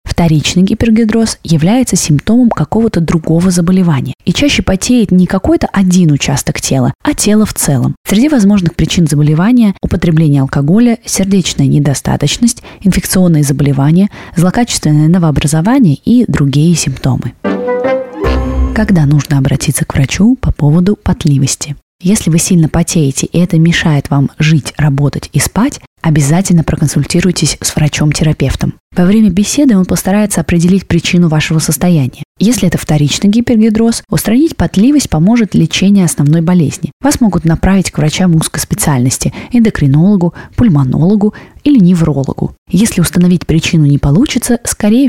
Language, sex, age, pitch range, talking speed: Russian, female, 20-39, 150-205 Hz, 125 wpm